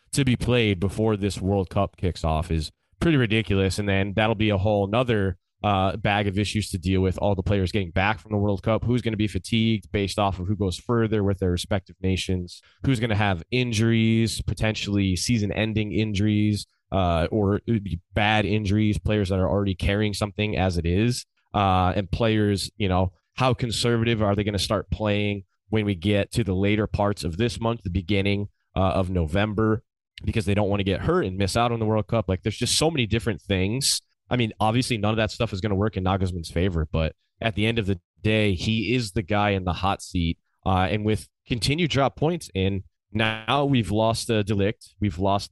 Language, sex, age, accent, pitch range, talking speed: English, male, 20-39, American, 95-110 Hz, 220 wpm